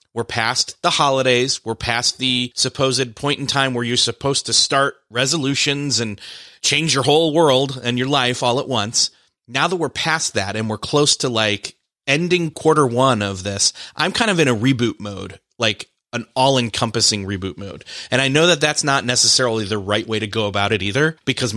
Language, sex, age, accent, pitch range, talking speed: English, male, 30-49, American, 105-135 Hz, 200 wpm